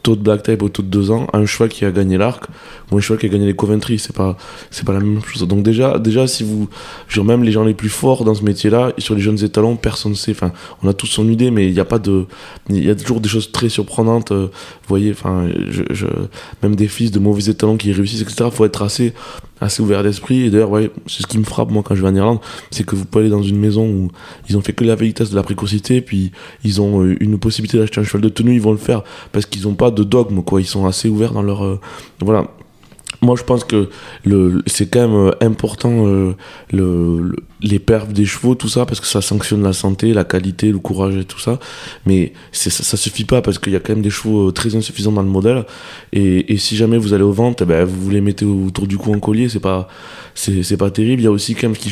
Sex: male